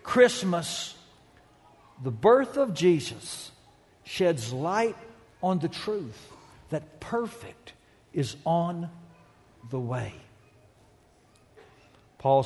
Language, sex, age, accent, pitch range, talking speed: English, male, 60-79, American, 120-170 Hz, 80 wpm